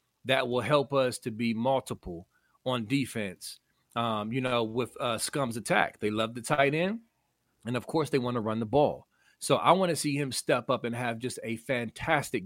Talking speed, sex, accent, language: 205 wpm, male, American, English